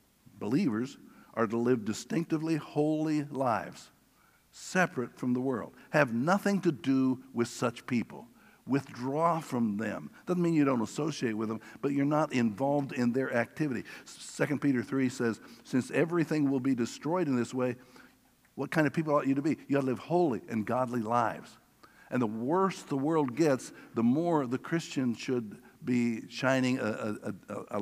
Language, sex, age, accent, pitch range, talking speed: English, male, 60-79, American, 105-140 Hz, 170 wpm